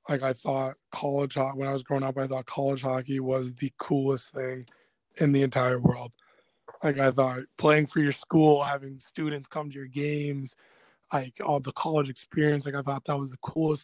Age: 20-39